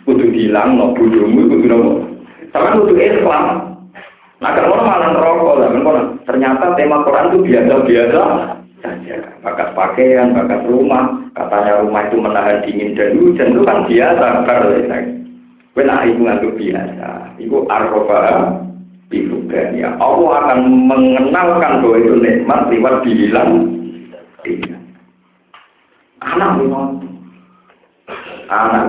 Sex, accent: male, native